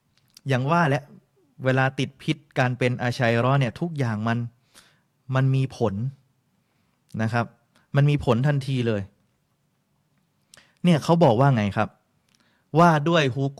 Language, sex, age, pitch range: Thai, male, 20-39, 120-150 Hz